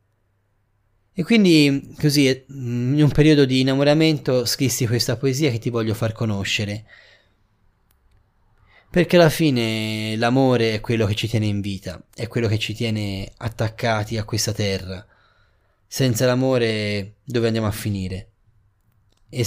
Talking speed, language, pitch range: 135 wpm, Italian, 100-125 Hz